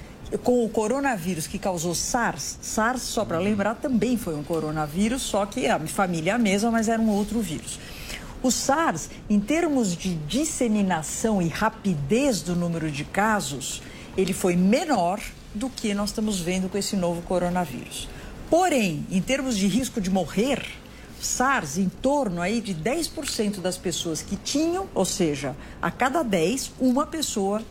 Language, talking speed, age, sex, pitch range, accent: Portuguese, 160 wpm, 50-69, female, 185-245 Hz, Brazilian